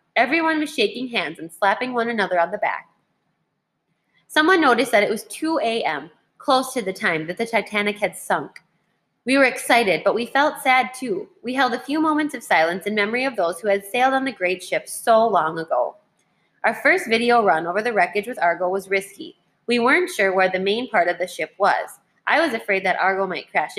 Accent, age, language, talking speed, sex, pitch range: American, 20-39, English, 215 wpm, female, 195-265 Hz